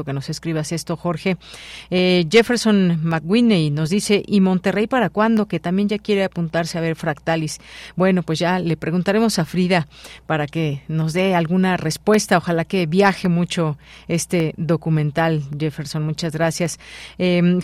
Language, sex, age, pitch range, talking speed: Spanish, female, 40-59, 160-195 Hz, 155 wpm